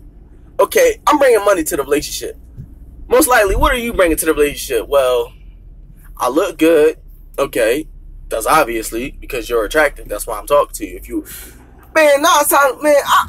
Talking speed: 180 wpm